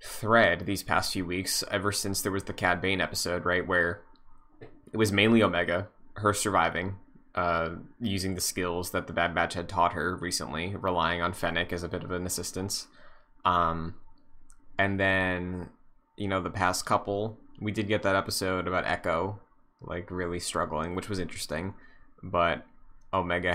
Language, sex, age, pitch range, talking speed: English, male, 20-39, 90-110 Hz, 165 wpm